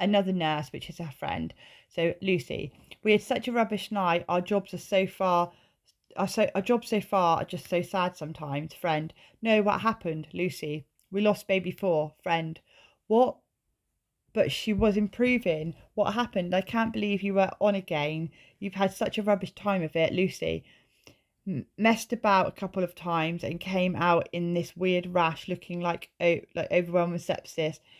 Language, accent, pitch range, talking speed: English, British, 160-195 Hz, 170 wpm